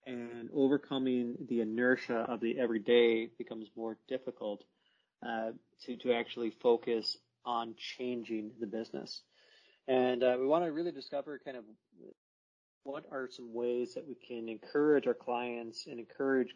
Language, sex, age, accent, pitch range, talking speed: English, male, 30-49, American, 115-130 Hz, 145 wpm